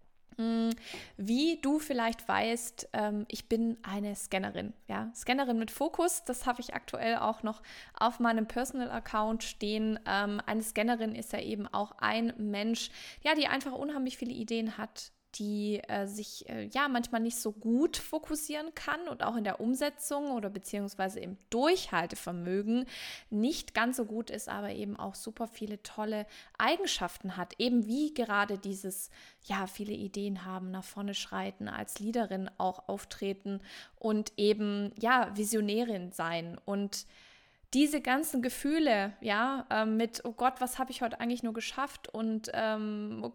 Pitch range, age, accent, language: 205-250 Hz, 20-39, German, German